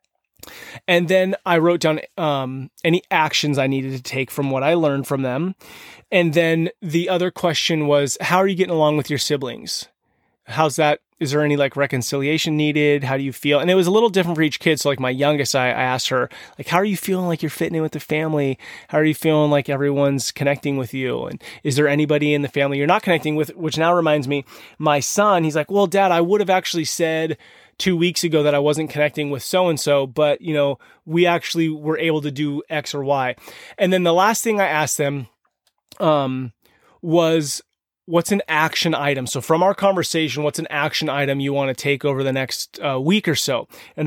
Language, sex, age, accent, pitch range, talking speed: English, male, 20-39, American, 145-175 Hz, 220 wpm